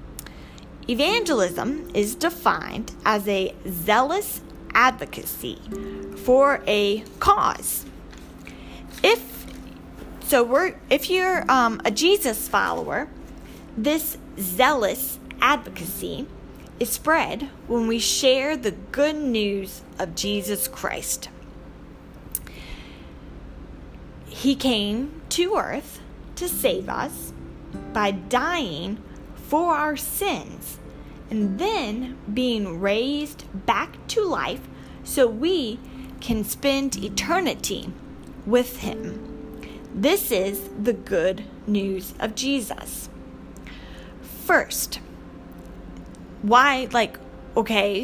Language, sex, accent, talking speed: English, female, American, 85 wpm